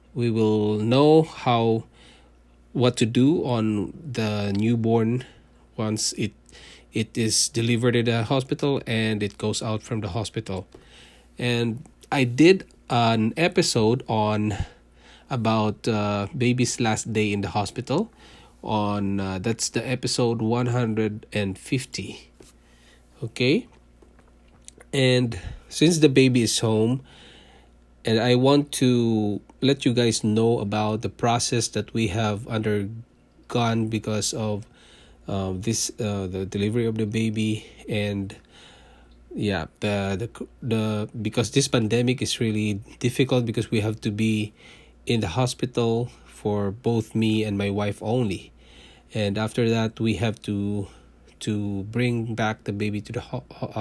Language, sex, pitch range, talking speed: English, male, 100-120 Hz, 135 wpm